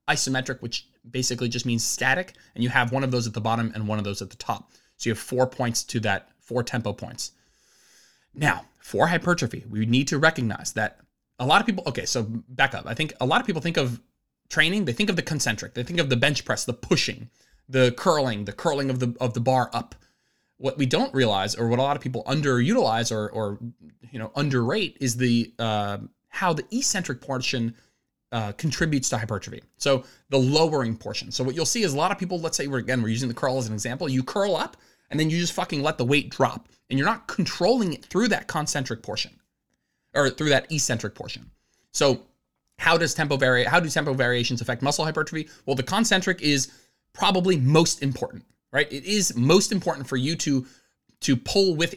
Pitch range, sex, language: 120-160 Hz, male, English